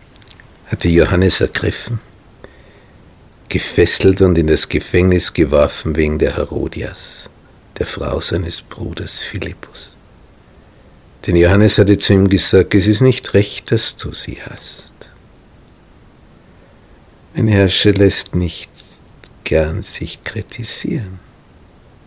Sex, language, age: male, German, 60-79